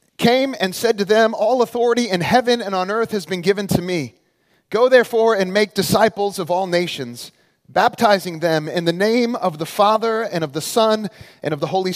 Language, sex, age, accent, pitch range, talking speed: English, male, 30-49, American, 145-200 Hz, 205 wpm